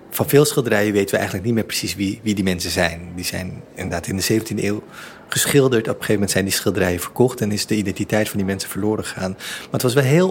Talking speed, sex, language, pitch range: 255 wpm, male, Dutch, 110-150 Hz